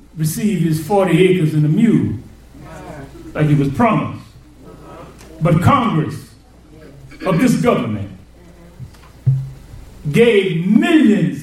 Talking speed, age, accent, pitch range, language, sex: 95 wpm, 40-59, American, 140-210 Hz, English, male